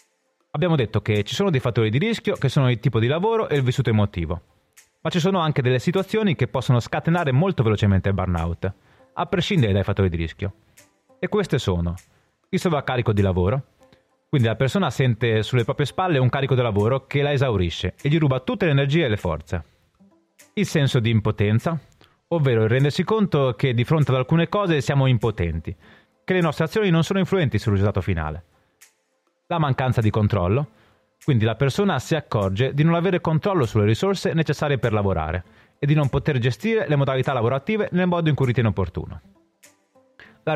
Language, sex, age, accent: Italian, male, 30-49, native